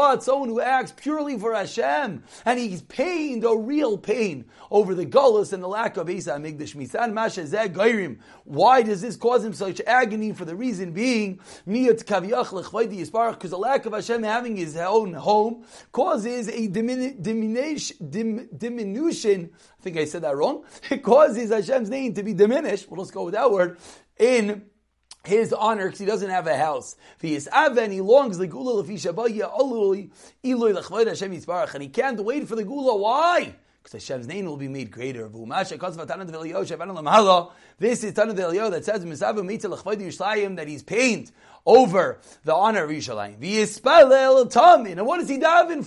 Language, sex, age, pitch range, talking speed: English, male, 30-49, 185-255 Hz, 145 wpm